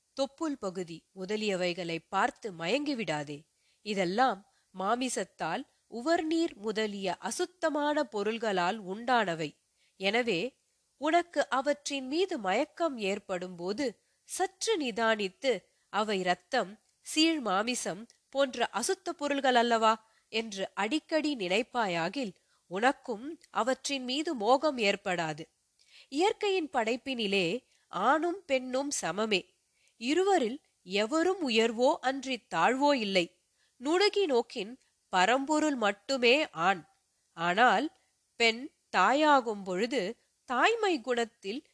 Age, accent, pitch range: 30-49, native, 200-300 Hz